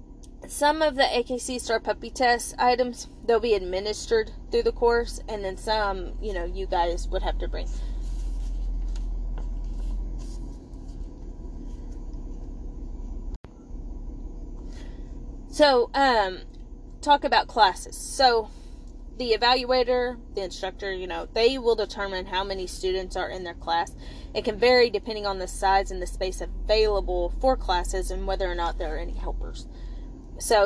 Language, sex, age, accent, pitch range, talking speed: English, female, 20-39, American, 190-245 Hz, 135 wpm